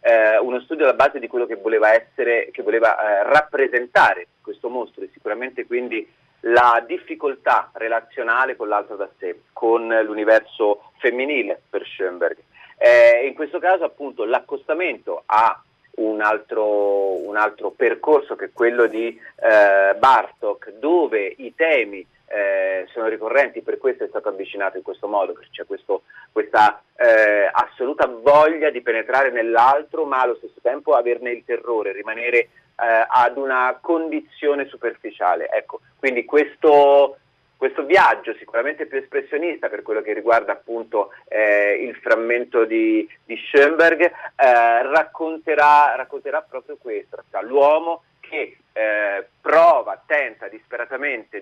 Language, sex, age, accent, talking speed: Italian, male, 30-49, native, 135 wpm